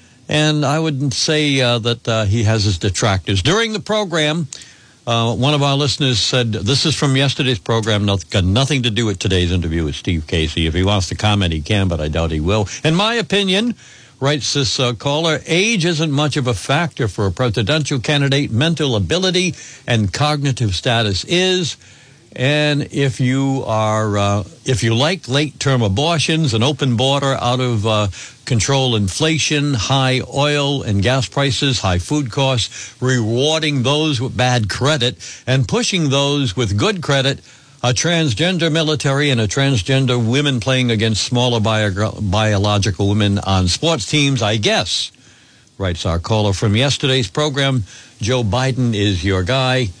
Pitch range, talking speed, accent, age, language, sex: 110-145 Hz, 165 wpm, American, 60-79, English, male